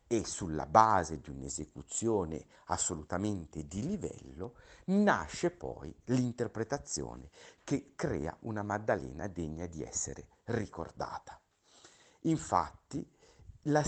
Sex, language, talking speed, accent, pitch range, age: male, Italian, 90 wpm, native, 80-125 Hz, 50-69